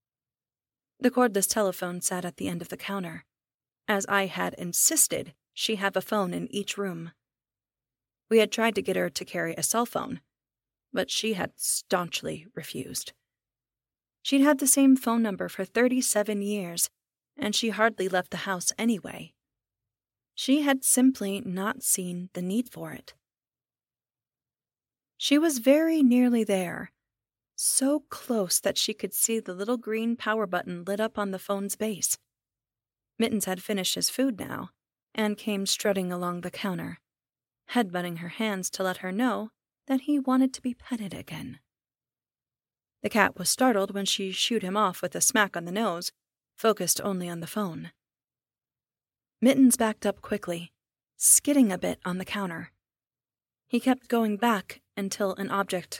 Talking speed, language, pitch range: 160 wpm, English, 175-225 Hz